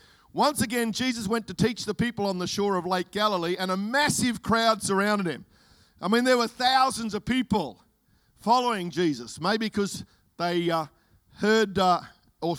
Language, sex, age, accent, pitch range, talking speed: English, male, 50-69, Australian, 175-220 Hz, 170 wpm